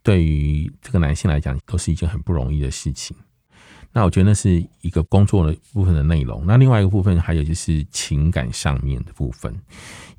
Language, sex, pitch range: Chinese, male, 75-95 Hz